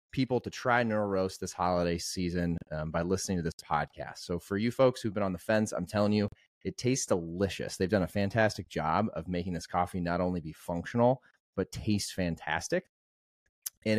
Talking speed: 195 wpm